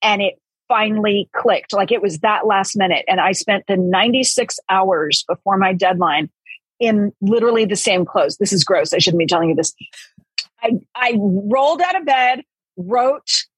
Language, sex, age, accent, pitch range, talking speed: English, female, 40-59, American, 185-230 Hz, 175 wpm